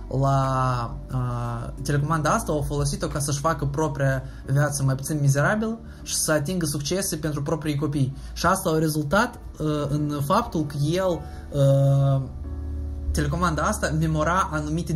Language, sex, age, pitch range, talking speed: Romanian, male, 20-39, 135-165 Hz, 140 wpm